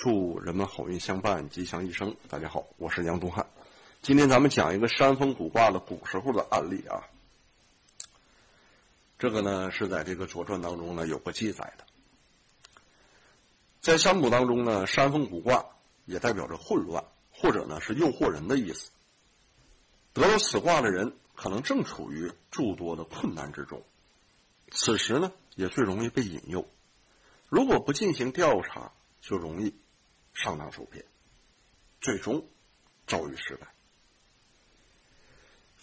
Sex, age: male, 60-79